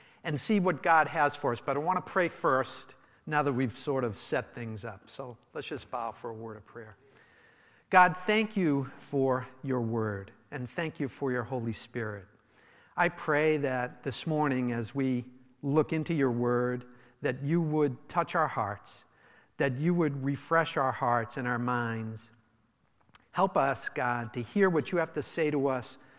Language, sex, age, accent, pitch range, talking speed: English, male, 50-69, American, 120-160 Hz, 185 wpm